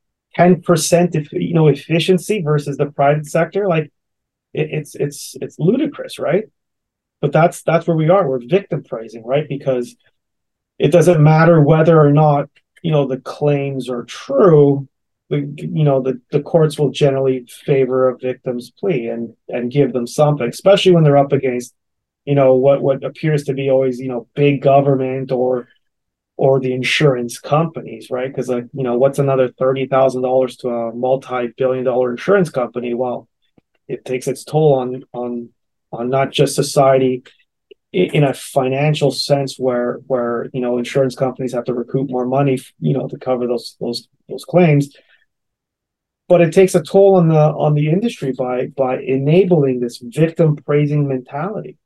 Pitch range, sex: 125-150 Hz, male